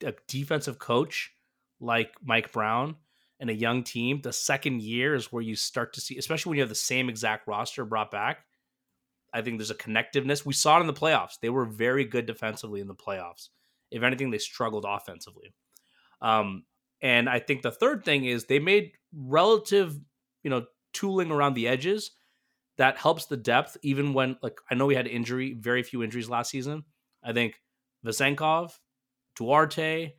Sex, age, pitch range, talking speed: male, 30-49, 115-145 Hz, 180 wpm